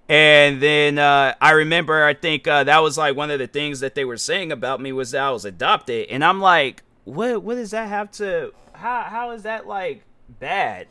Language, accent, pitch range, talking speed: English, American, 130-200 Hz, 225 wpm